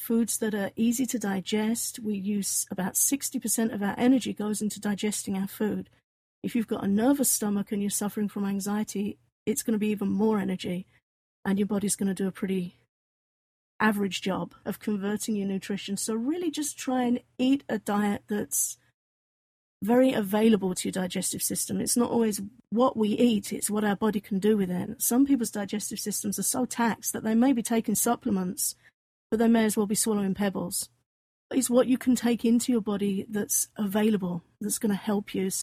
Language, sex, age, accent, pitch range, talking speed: English, female, 50-69, British, 200-230 Hz, 195 wpm